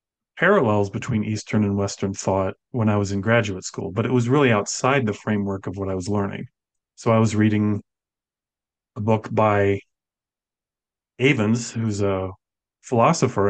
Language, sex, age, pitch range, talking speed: English, male, 40-59, 100-120 Hz, 155 wpm